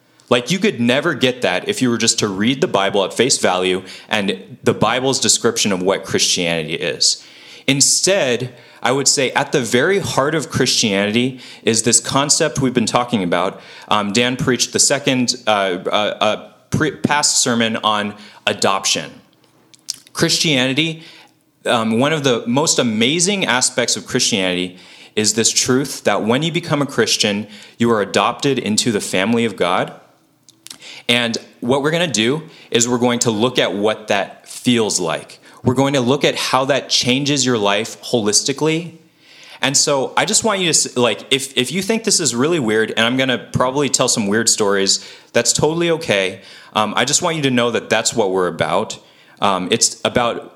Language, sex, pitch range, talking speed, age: English, male, 110-145 Hz, 180 wpm, 30-49